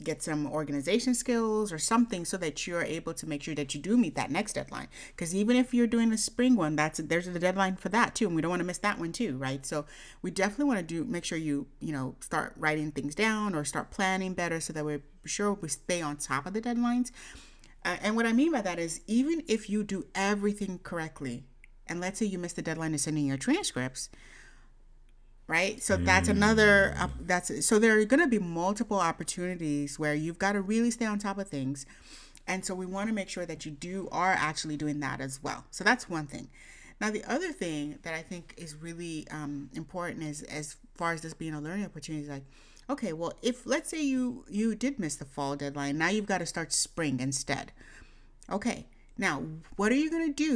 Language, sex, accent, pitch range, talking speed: English, female, American, 155-215 Hz, 230 wpm